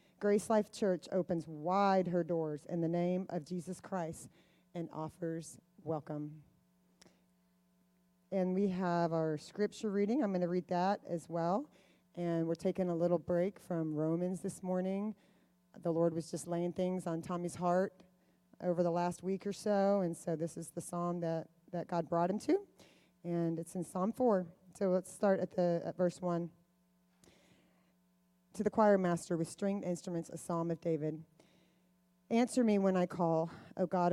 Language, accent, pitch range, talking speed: English, American, 170-190 Hz, 170 wpm